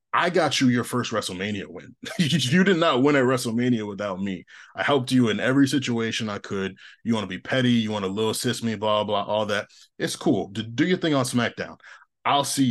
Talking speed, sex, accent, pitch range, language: 220 wpm, male, American, 95-120 Hz, English